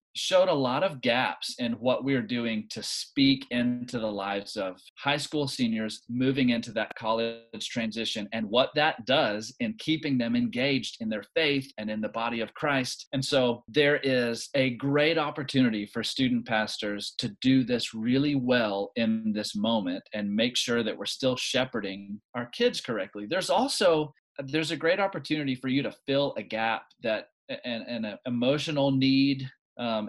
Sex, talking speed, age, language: male, 175 wpm, 30-49, English